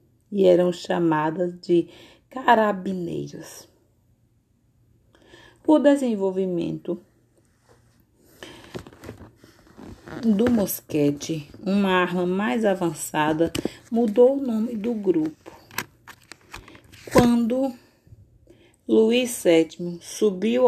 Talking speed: 65 wpm